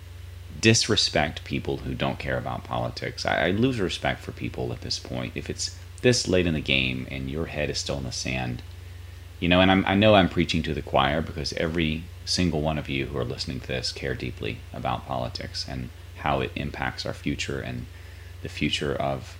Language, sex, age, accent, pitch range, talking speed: English, male, 30-49, American, 70-90 Hz, 200 wpm